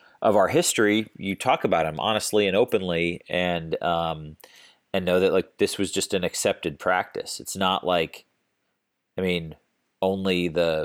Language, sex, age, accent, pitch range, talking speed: English, male, 30-49, American, 85-95 Hz, 160 wpm